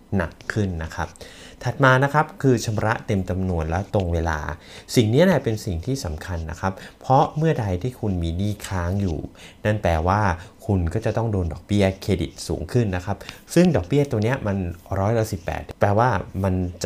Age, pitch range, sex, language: 30-49, 90-115 Hz, male, Thai